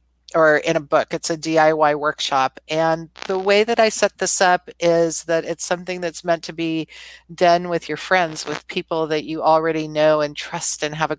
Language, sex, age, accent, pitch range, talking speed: English, female, 40-59, American, 150-170 Hz, 210 wpm